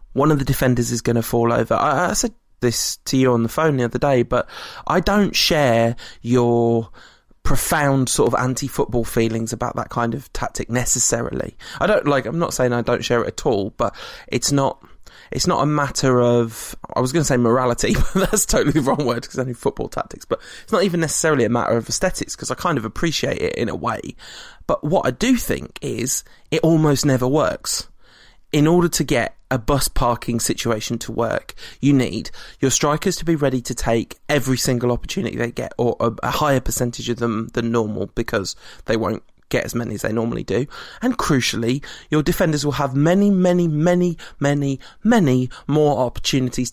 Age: 20-39